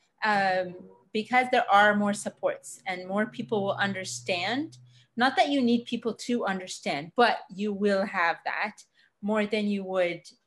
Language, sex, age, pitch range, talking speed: English, female, 30-49, 195-235 Hz, 155 wpm